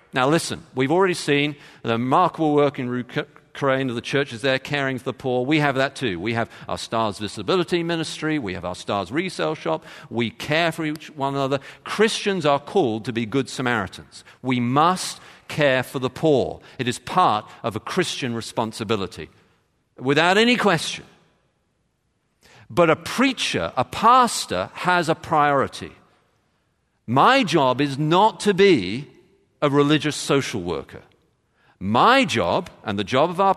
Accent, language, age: British, English, 50-69